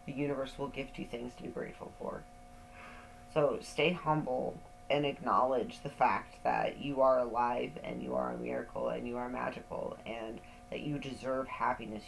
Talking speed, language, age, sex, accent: 175 wpm, English, 30-49, female, American